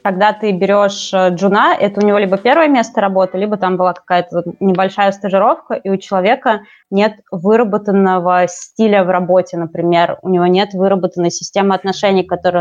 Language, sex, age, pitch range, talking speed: Russian, female, 20-39, 175-200 Hz, 160 wpm